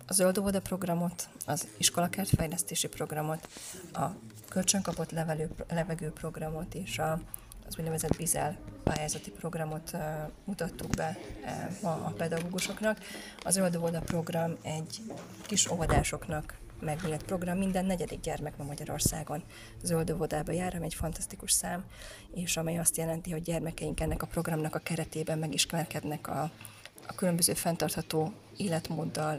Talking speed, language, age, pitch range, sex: 125 wpm, Hungarian, 30-49, 150-170 Hz, female